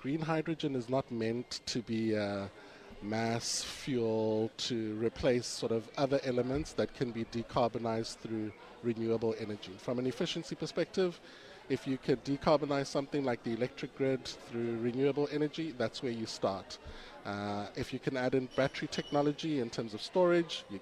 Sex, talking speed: male, 160 wpm